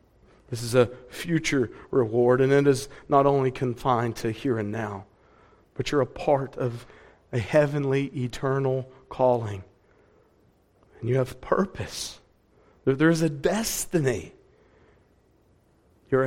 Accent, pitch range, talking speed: American, 115-165 Hz, 120 wpm